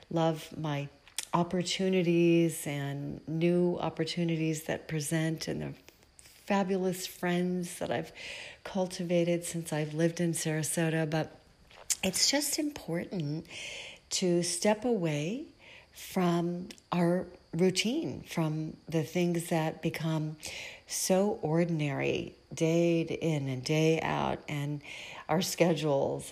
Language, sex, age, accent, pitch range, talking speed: English, female, 40-59, American, 155-180 Hz, 105 wpm